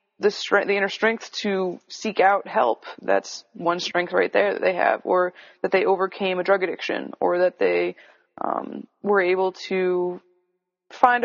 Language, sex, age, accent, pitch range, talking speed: English, female, 20-39, American, 180-205 Hz, 165 wpm